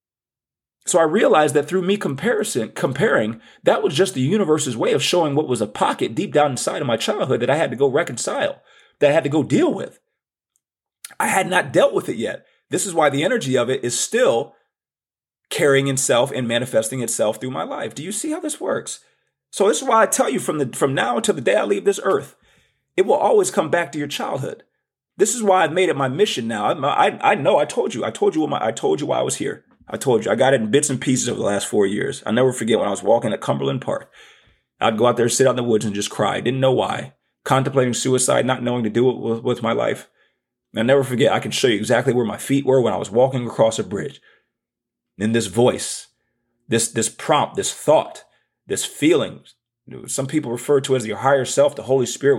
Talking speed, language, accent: 245 wpm, English, American